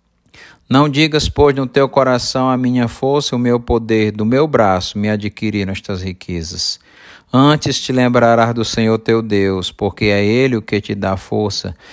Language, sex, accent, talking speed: Portuguese, male, Brazilian, 175 wpm